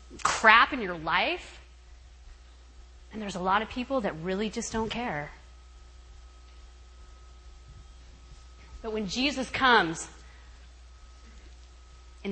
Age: 30-49